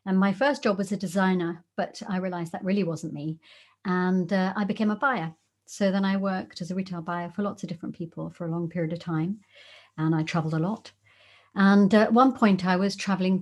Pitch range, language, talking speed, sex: 165-195 Hz, English, 235 wpm, female